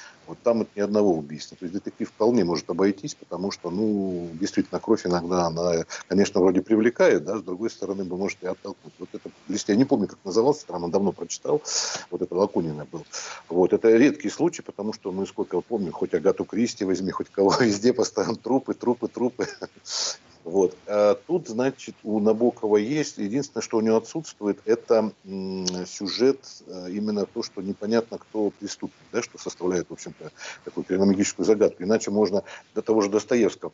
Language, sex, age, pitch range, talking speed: Russian, male, 50-69, 90-115 Hz, 180 wpm